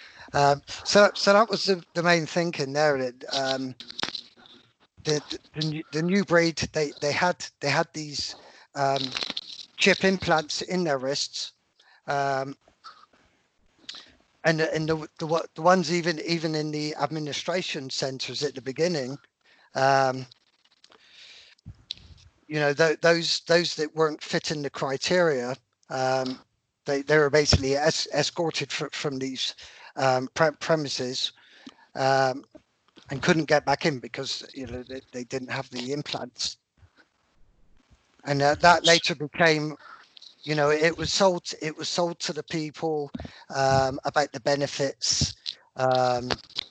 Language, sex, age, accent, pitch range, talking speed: English, male, 50-69, British, 135-160 Hz, 135 wpm